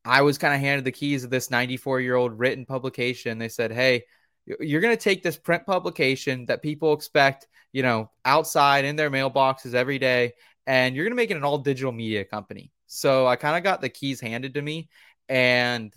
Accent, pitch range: American, 115-135 Hz